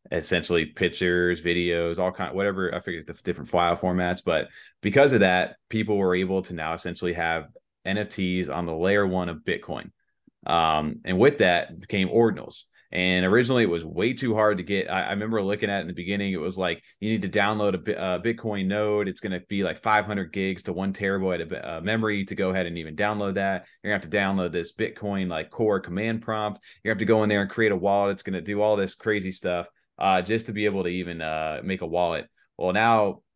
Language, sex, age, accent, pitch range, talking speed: English, male, 30-49, American, 90-105 Hz, 230 wpm